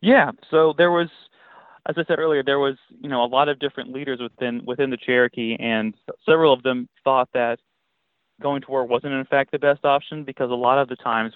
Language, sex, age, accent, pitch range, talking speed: English, male, 30-49, American, 110-130 Hz, 220 wpm